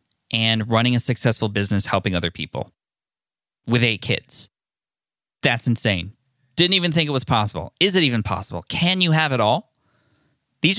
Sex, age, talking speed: male, 20-39, 160 wpm